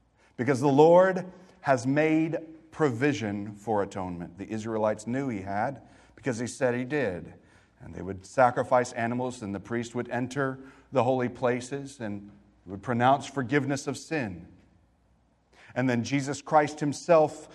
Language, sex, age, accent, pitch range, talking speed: English, male, 40-59, American, 110-155 Hz, 145 wpm